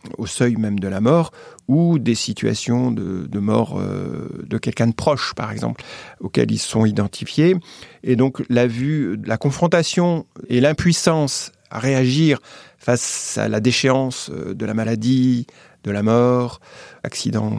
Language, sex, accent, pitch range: French, male, French, 115-145 Hz